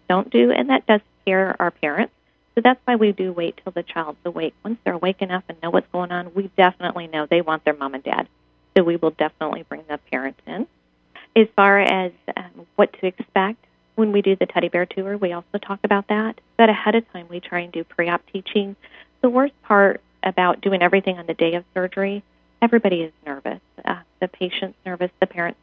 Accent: American